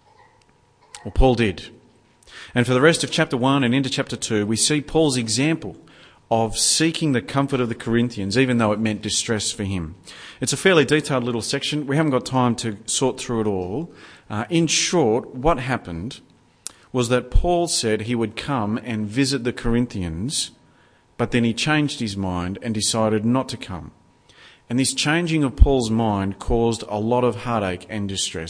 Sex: male